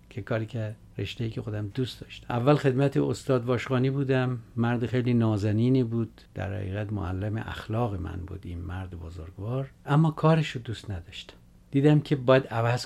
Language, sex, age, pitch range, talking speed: Persian, male, 60-79, 95-125 Hz, 160 wpm